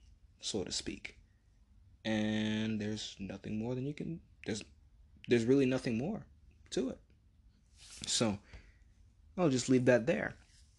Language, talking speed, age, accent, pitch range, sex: English, 130 wpm, 20-39, American, 95-130 Hz, male